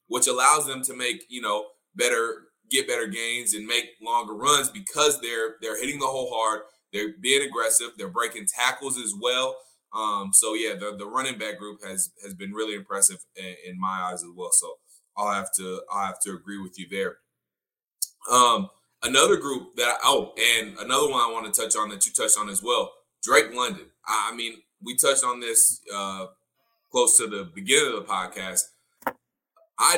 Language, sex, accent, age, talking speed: English, male, American, 20-39, 195 wpm